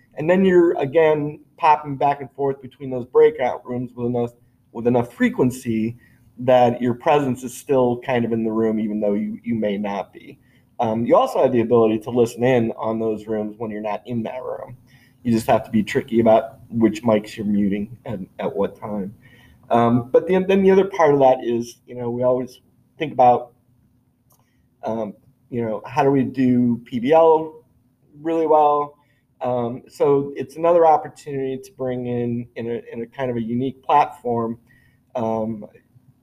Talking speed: 180 wpm